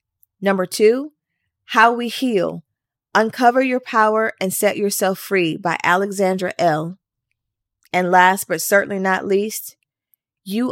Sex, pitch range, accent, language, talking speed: female, 160-210 Hz, American, English, 125 wpm